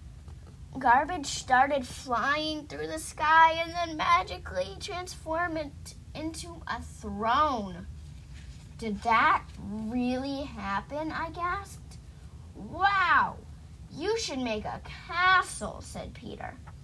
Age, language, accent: 10-29, English, American